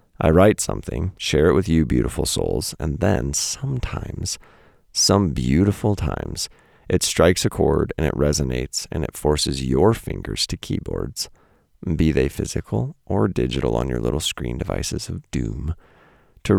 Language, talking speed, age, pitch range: English, 150 wpm, 40-59, 75-95 Hz